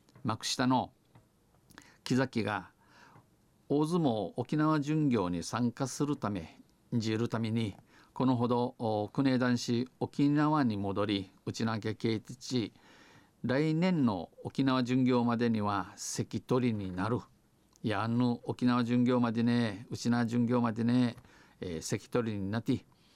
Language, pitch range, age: Japanese, 110-130 Hz, 50-69